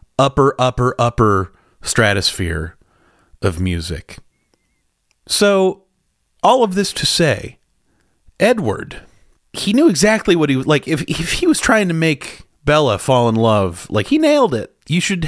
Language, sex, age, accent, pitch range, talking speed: English, male, 30-49, American, 110-165 Hz, 145 wpm